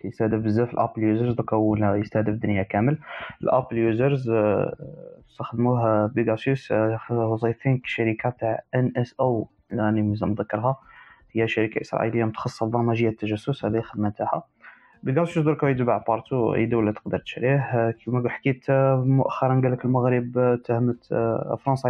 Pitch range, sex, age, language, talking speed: 110-140 Hz, male, 20-39, Arabic, 140 wpm